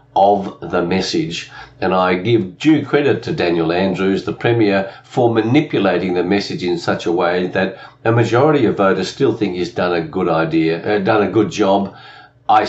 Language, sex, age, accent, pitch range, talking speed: English, male, 50-69, Australian, 100-135 Hz, 185 wpm